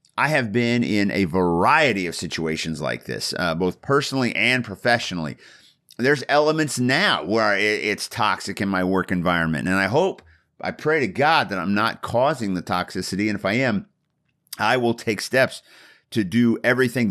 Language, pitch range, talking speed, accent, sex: English, 95-125 Hz, 170 wpm, American, male